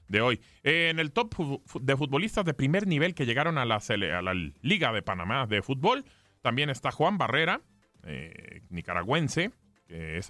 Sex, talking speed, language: male, 190 wpm, Spanish